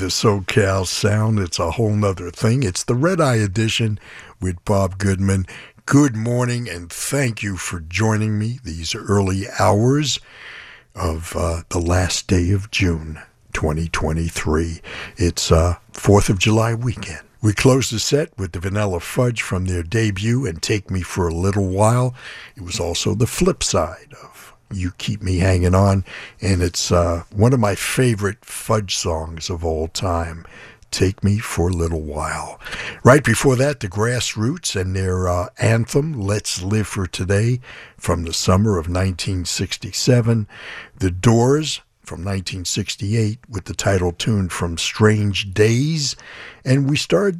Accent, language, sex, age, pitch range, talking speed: American, English, male, 60-79, 90-120 Hz, 155 wpm